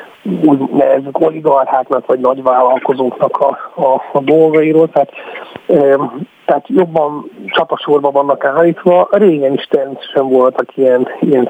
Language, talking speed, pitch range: Hungarian, 110 wpm, 135-155 Hz